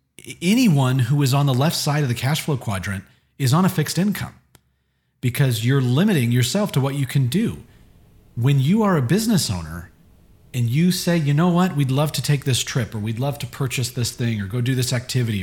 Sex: male